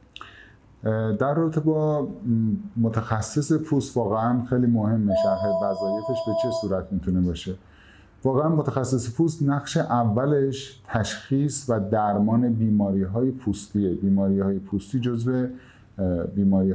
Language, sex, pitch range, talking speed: Persian, male, 100-125 Hz, 110 wpm